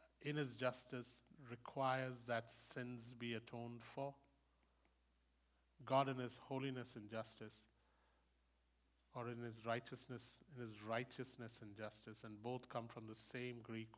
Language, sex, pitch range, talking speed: English, male, 115-140 Hz, 135 wpm